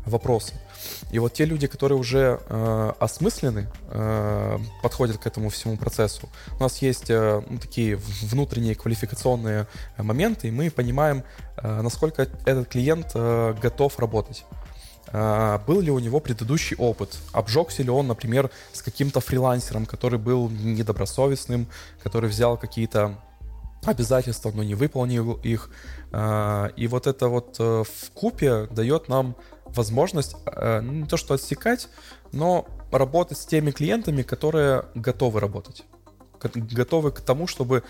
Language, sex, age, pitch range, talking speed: Russian, male, 20-39, 110-135 Hz, 135 wpm